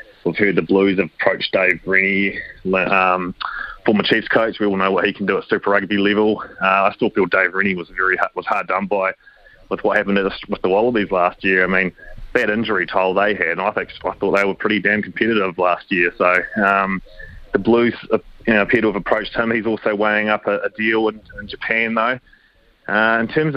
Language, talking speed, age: English, 220 wpm, 20-39